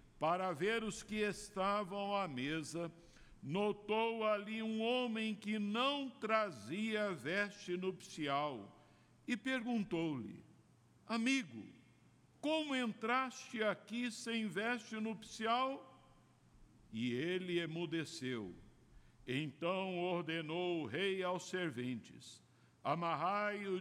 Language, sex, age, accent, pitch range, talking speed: Portuguese, male, 60-79, Brazilian, 145-205 Hz, 90 wpm